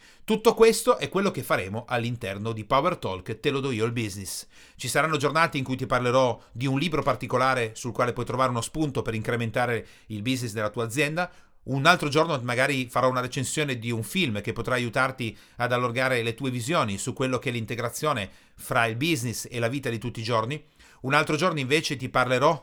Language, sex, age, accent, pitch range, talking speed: Italian, male, 40-59, native, 120-150 Hz, 210 wpm